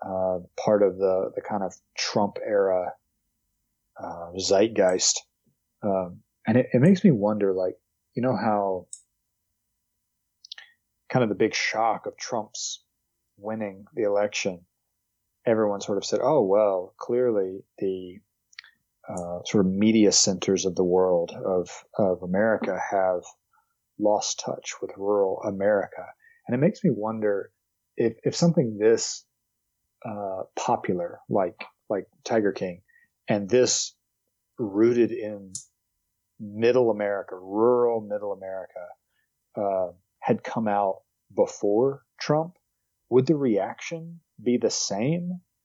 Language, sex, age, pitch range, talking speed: English, male, 30-49, 100-140 Hz, 120 wpm